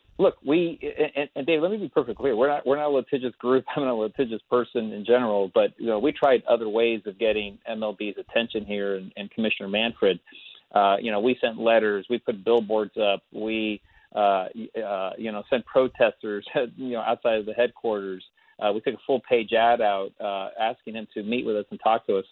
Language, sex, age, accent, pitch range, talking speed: English, male, 40-59, American, 110-135 Hz, 220 wpm